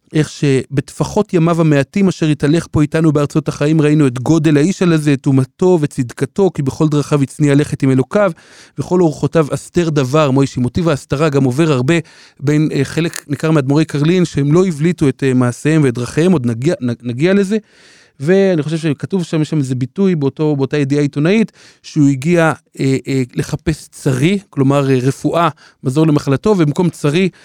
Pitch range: 135-160 Hz